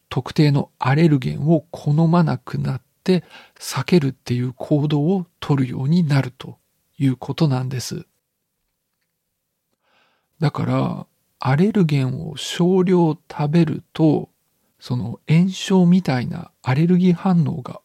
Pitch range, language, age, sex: 135-170 Hz, Japanese, 50-69, male